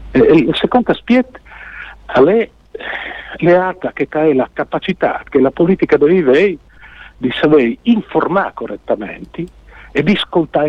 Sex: male